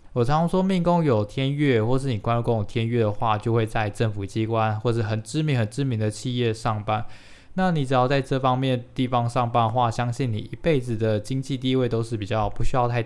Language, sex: Chinese, male